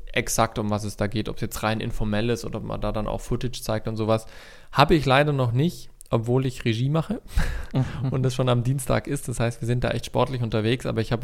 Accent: German